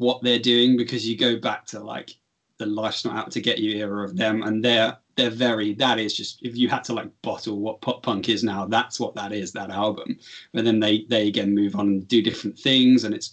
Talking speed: 250 wpm